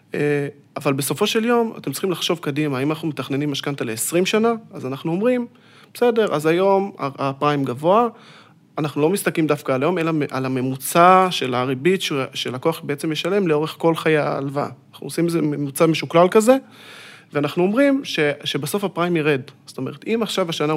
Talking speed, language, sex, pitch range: 165 wpm, Hebrew, male, 140-180 Hz